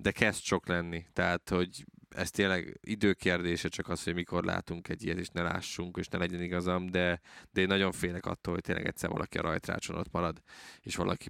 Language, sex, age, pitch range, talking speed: Hungarian, male, 20-39, 85-100 Hz, 205 wpm